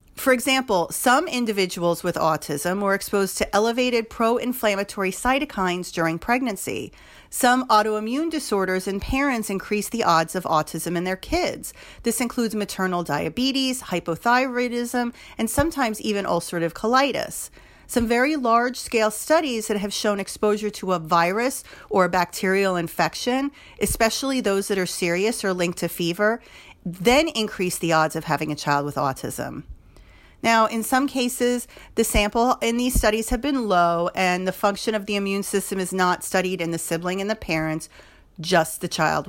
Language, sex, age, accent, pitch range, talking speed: English, female, 40-59, American, 175-240 Hz, 160 wpm